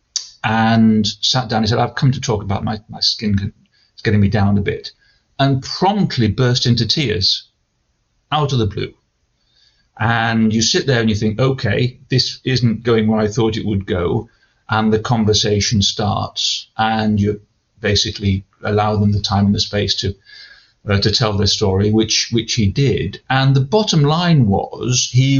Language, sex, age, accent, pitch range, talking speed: English, male, 40-59, British, 105-125 Hz, 175 wpm